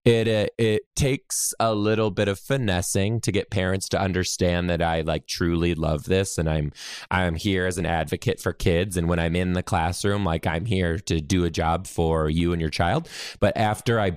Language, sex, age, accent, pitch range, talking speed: English, male, 20-39, American, 85-105 Hz, 210 wpm